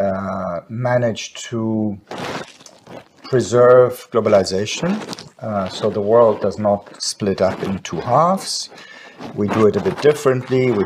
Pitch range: 105-130 Hz